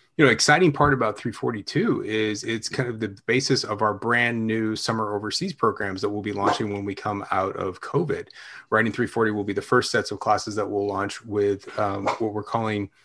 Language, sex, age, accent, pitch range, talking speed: English, male, 30-49, American, 100-120 Hz, 200 wpm